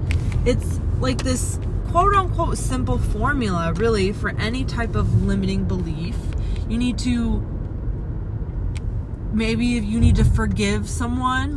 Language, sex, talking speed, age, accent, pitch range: English, female, 115 wpm, 20-39, American, 85-115 Hz